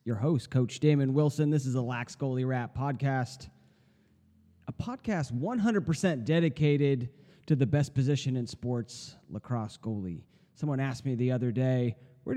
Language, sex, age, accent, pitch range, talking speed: English, male, 30-49, American, 125-150 Hz, 150 wpm